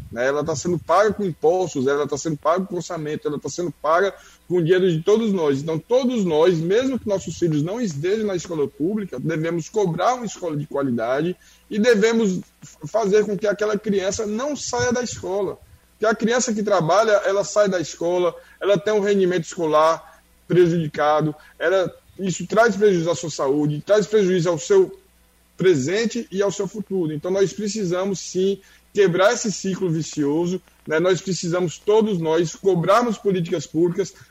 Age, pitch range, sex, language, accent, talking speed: 20-39, 165-205 Hz, male, Portuguese, Brazilian, 170 wpm